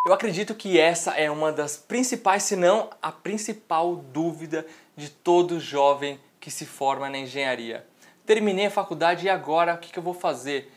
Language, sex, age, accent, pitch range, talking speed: Portuguese, male, 20-39, Brazilian, 150-195 Hz, 175 wpm